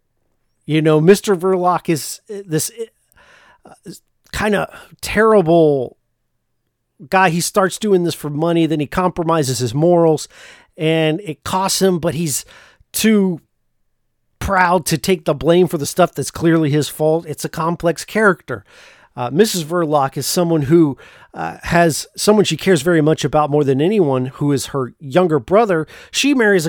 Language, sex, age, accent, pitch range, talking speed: English, male, 40-59, American, 145-185 Hz, 155 wpm